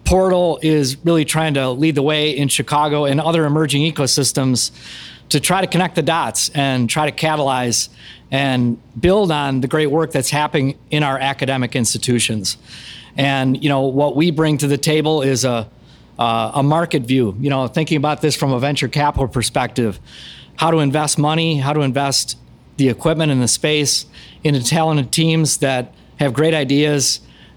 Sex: male